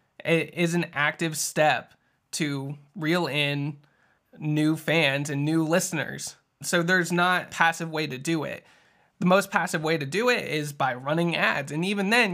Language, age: English, 20-39